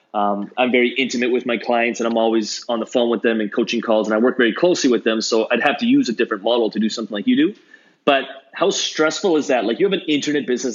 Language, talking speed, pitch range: English, 280 wpm, 115-140 Hz